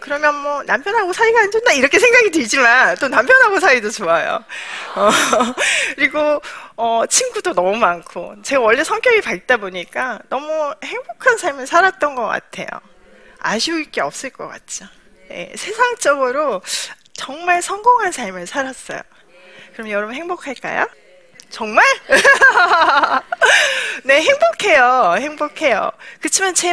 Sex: female